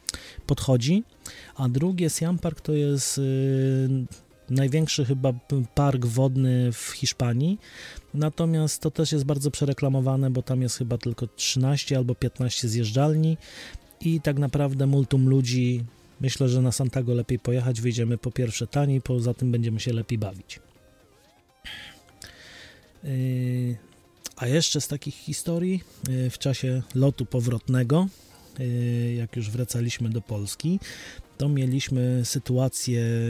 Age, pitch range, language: 30-49, 120-140 Hz, Polish